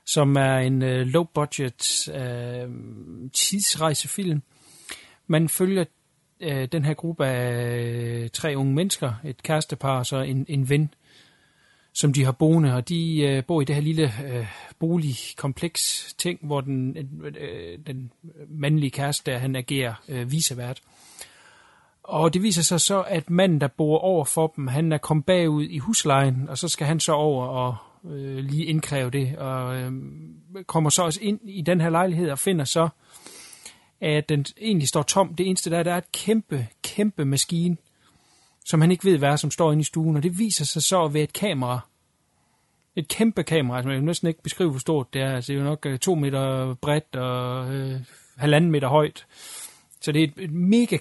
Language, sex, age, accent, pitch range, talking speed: Danish, male, 40-59, native, 135-170 Hz, 180 wpm